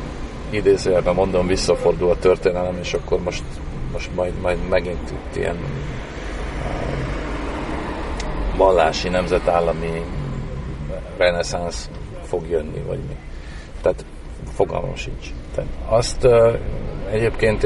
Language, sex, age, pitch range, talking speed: Hungarian, male, 40-59, 70-90 Hz, 90 wpm